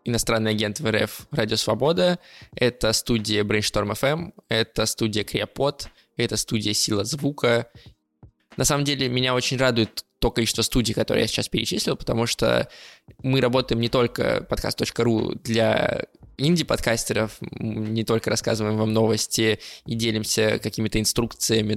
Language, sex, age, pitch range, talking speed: Russian, male, 20-39, 110-125 Hz, 125 wpm